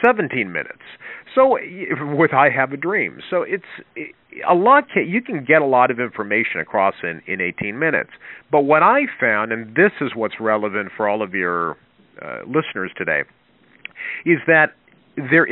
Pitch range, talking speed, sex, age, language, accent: 105-145 Hz, 165 wpm, male, 50-69, English, American